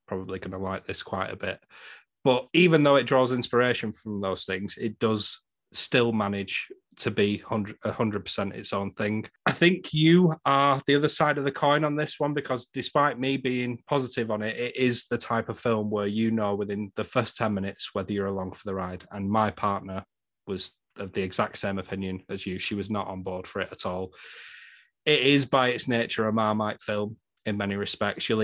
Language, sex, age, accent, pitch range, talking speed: English, male, 30-49, British, 100-125 Hz, 215 wpm